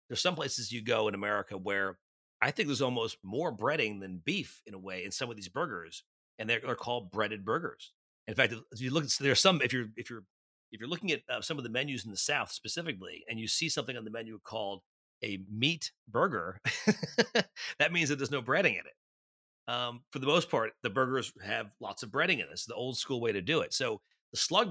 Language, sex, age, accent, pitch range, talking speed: English, male, 40-59, American, 105-155 Hz, 235 wpm